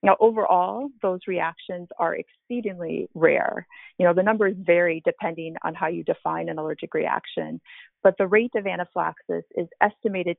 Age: 30-49